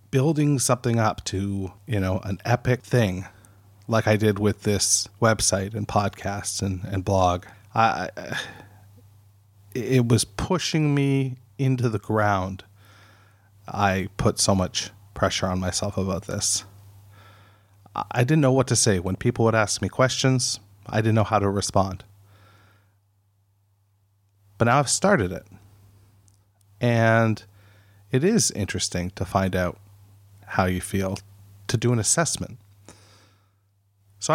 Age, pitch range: 30-49, 100-115 Hz